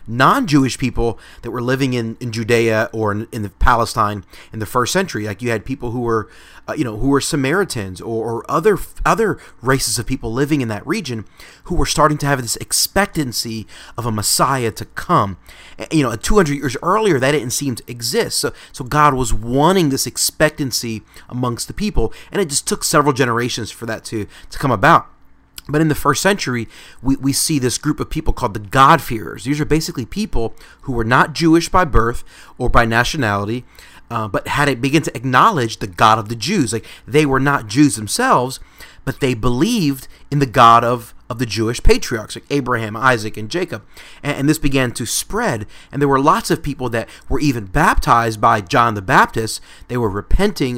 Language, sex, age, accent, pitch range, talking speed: English, male, 30-49, American, 115-145 Hz, 200 wpm